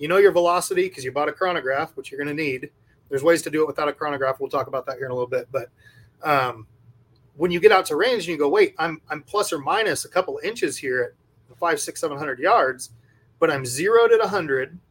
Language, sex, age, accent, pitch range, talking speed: English, male, 30-49, American, 125-175 Hz, 260 wpm